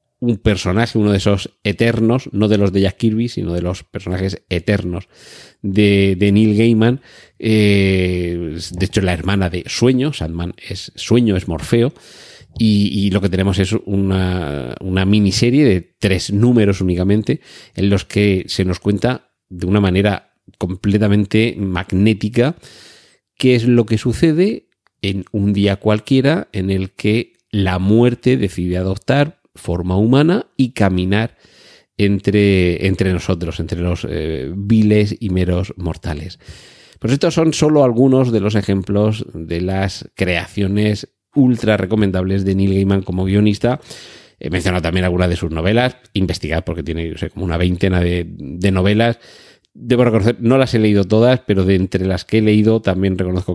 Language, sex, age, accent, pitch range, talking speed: Spanish, male, 40-59, Spanish, 90-110 Hz, 155 wpm